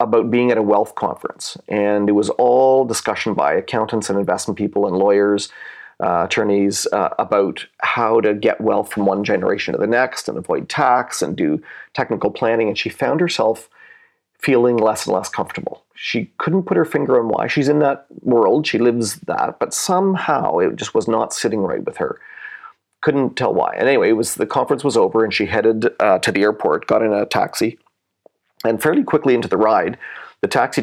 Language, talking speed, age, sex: English, 200 wpm, 40-59, male